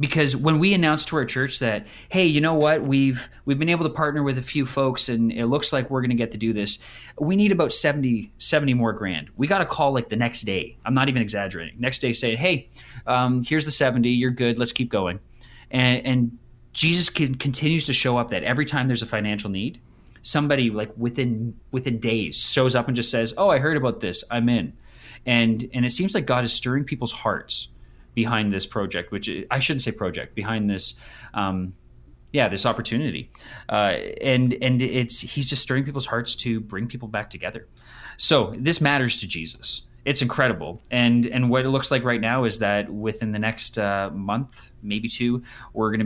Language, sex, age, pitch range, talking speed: English, male, 20-39, 105-130 Hz, 210 wpm